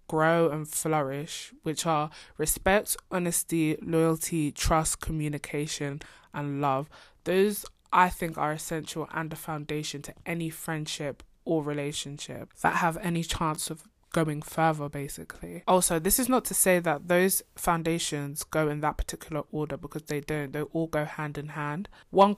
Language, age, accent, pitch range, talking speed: English, 20-39, British, 150-175 Hz, 155 wpm